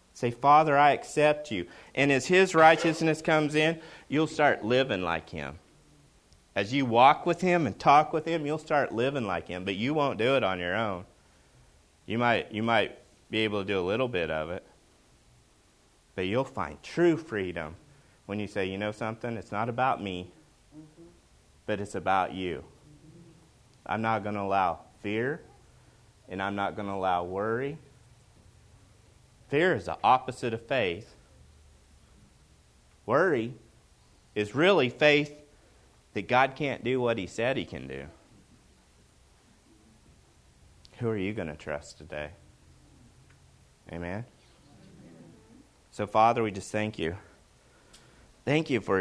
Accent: American